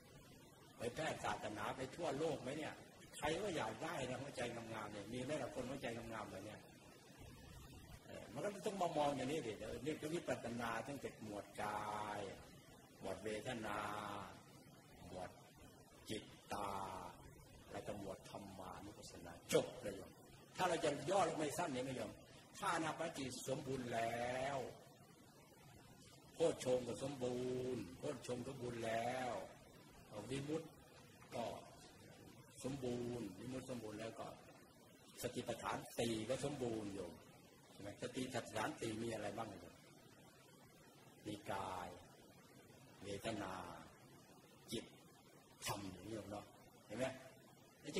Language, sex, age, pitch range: Thai, male, 60-79, 105-135 Hz